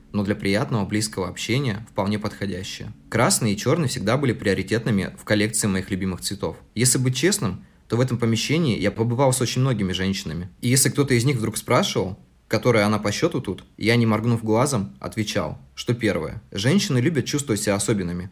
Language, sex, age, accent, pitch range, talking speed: Russian, male, 20-39, native, 100-120 Hz, 180 wpm